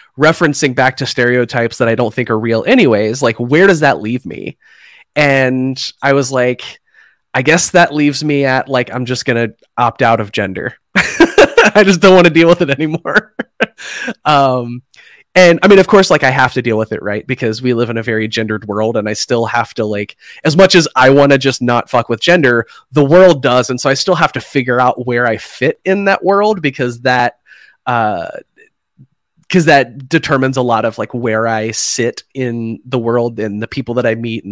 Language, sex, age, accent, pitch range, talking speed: English, male, 30-49, American, 115-150 Hz, 215 wpm